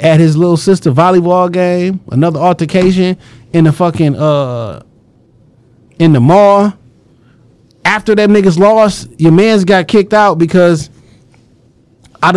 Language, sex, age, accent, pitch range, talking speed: English, male, 30-49, American, 155-210 Hz, 125 wpm